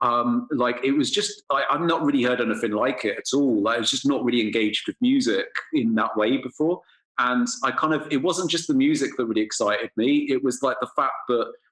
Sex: male